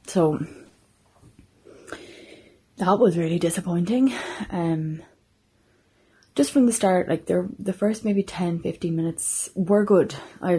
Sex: female